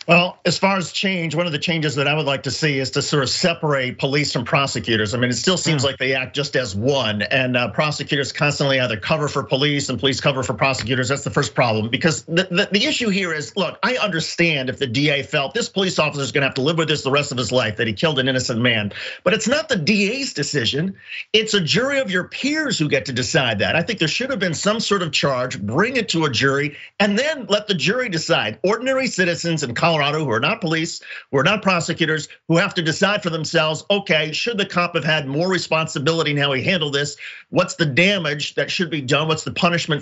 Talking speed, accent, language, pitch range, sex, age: 245 wpm, American, English, 140-185 Hz, male, 50-69